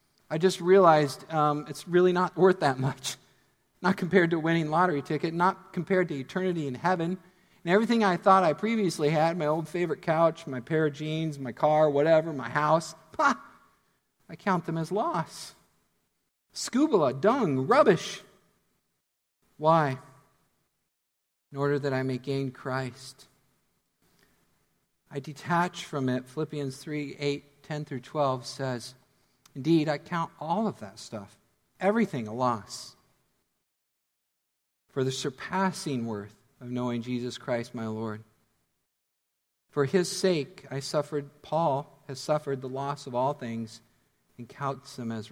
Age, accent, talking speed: 50-69, American, 140 wpm